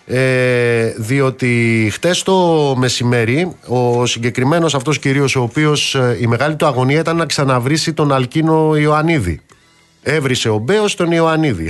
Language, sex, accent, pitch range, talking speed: Greek, male, native, 110-150 Hz, 135 wpm